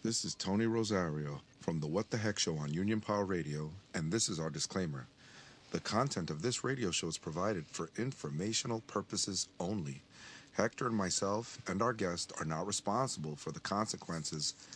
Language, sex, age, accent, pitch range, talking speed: English, male, 40-59, American, 90-115 Hz, 175 wpm